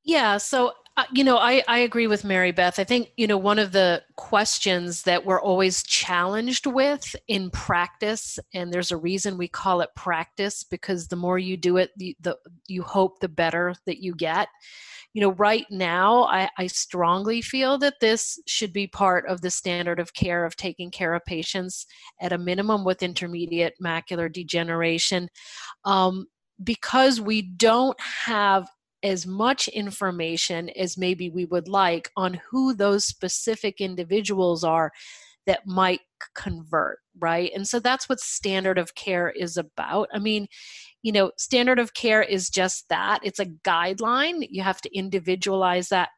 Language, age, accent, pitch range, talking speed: English, 30-49, American, 180-215 Hz, 170 wpm